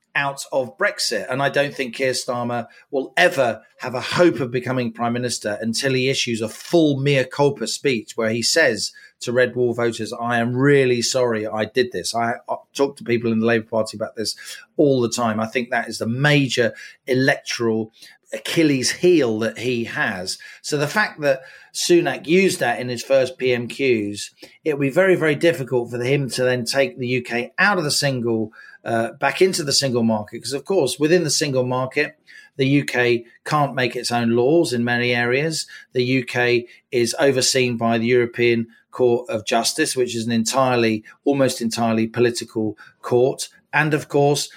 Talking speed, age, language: 185 wpm, 40-59, English